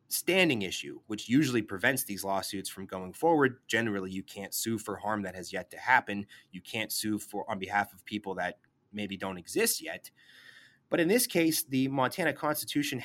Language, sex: English, male